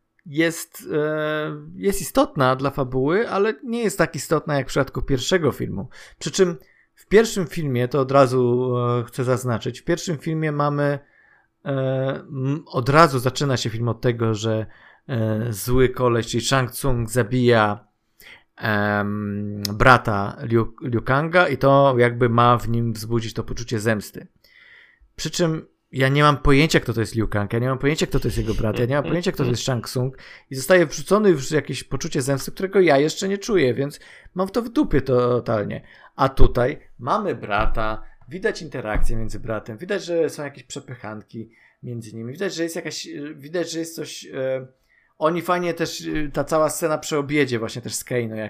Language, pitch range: Polish, 120-155 Hz